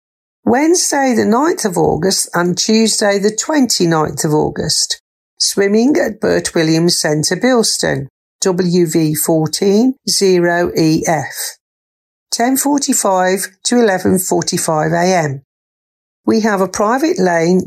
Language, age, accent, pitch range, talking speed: English, 50-69, British, 165-225 Hz, 90 wpm